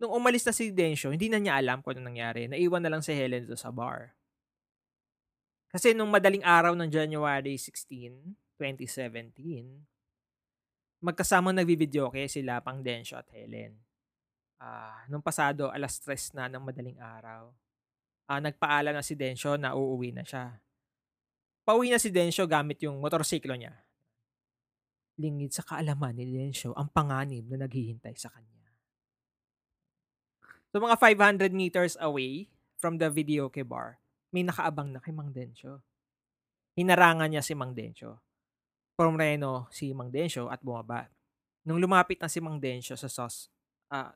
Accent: Filipino